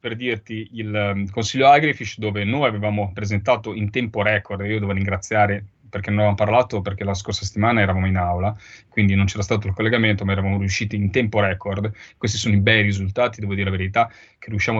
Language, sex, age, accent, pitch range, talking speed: Italian, male, 30-49, native, 100-115 Hz, 205 wpm